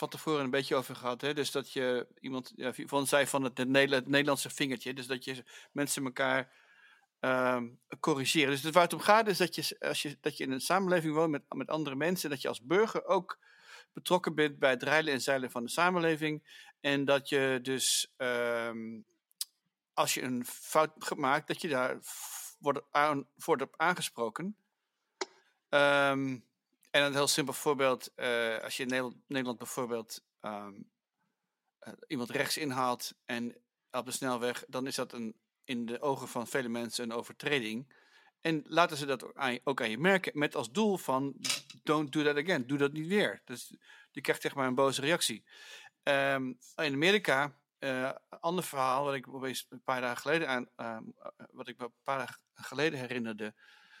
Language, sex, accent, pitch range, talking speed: English, male, Dutch, 125-150 Hz, 180 wpm